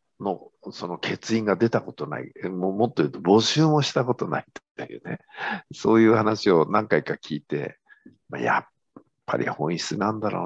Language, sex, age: Japanese, male, 50-69